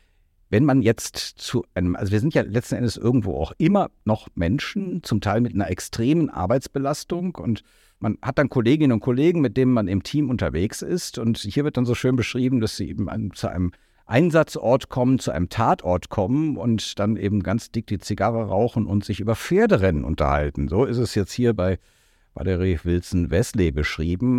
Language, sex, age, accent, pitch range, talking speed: German, male, 50-69, German, 100-135 Hz, 185 wpm